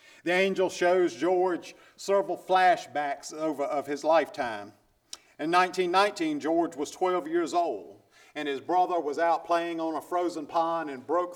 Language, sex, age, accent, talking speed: English, male, 50-69, American, 150 wpm